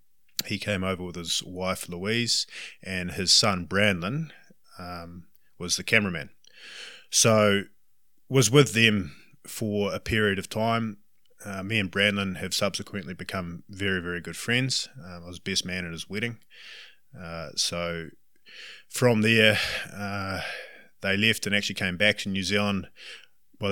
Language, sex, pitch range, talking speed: English, male, 90-105 Hz, 150 wpm